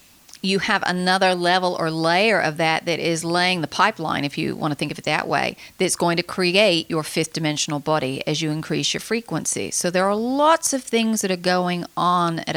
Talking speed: 220 wpm